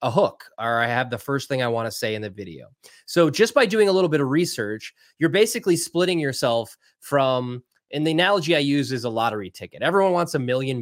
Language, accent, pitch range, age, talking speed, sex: English, American, 120-175 Hz, 20-39, 235 wpm, male